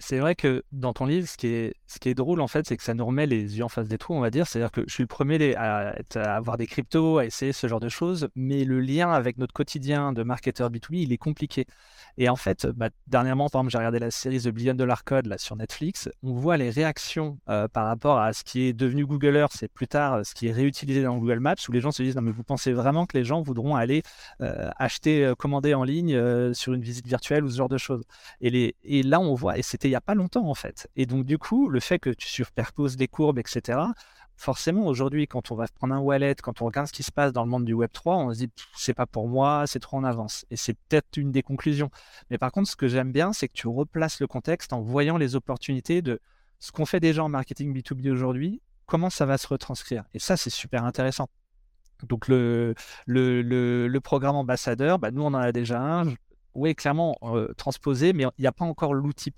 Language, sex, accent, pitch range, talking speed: French, male, French, 120-145 Hz, 260 wpm